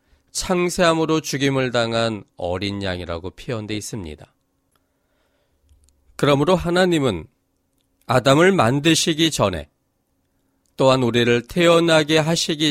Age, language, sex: 40-59, Korean, male